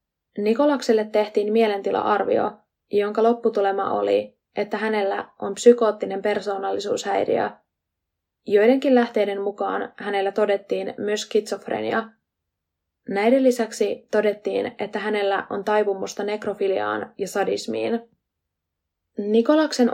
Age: 20-39